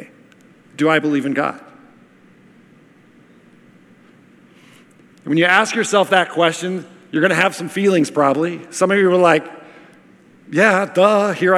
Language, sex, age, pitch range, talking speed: English, male, 40-59, 170-220 Hz, 135 wpm